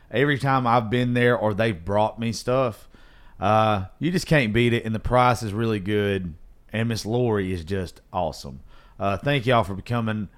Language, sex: English, male